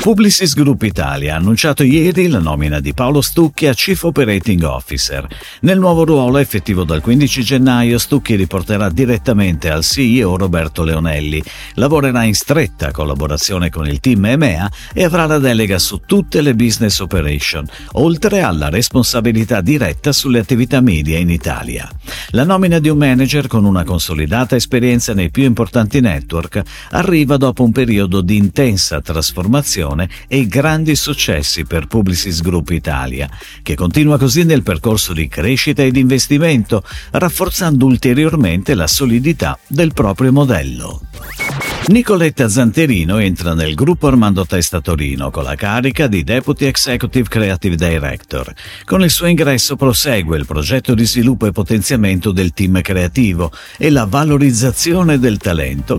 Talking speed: 145 wpm